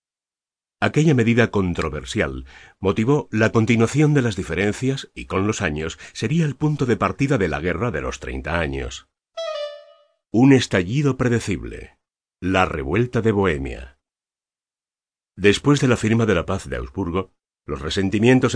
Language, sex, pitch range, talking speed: Spanish, male, 90-120 Hz, 140 wpm